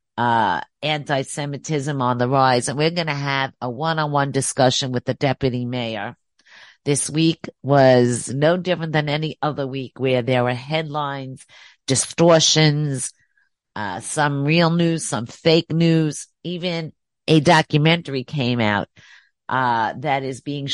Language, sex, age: English, female, 50-69